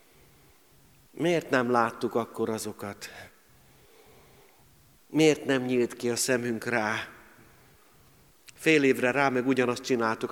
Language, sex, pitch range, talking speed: Hungarian, male, 120-140 Hz, 105 wpm